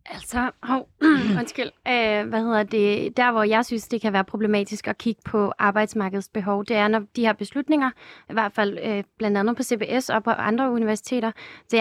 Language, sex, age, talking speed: Danish, female, 30-49, 205 wpm